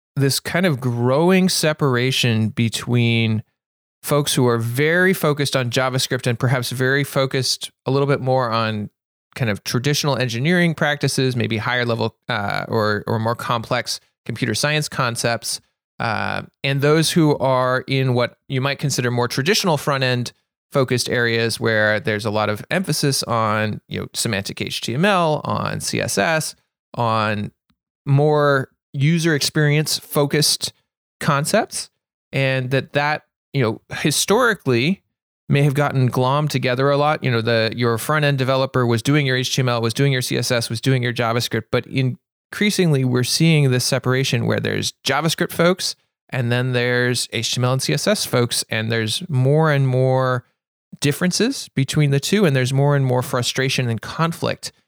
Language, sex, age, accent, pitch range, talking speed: English, male, 30-49, American, 120-145 Hz, 150 wpm